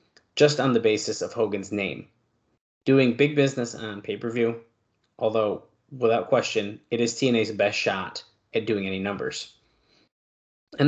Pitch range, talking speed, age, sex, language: 110-135 Hz, 140 wpm, 20-39, male, English